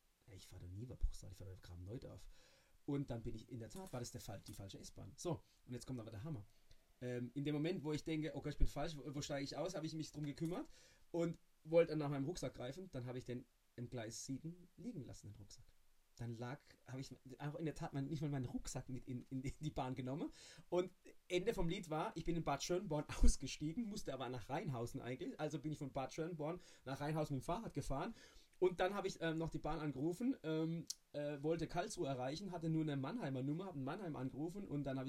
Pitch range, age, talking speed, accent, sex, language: 130-170 Hz, 30-49, 245 wpm, German, male, German